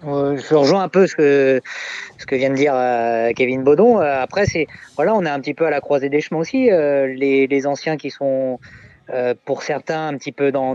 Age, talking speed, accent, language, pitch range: 30-49, 230 wpm, French, French, 130-160 Hz